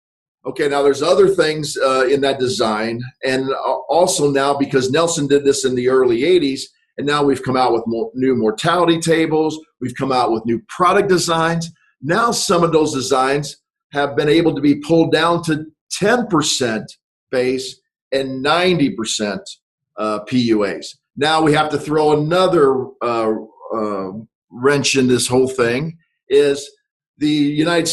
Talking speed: 155 wpm